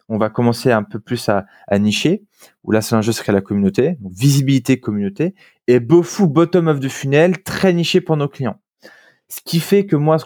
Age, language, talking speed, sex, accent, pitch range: 20-39, French, 215 wpm, male, French, 115-155 Hz